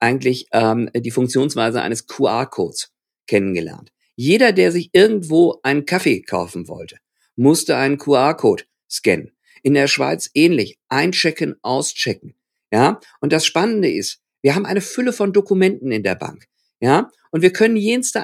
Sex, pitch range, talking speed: male, 135-190 Hz, 145 wpm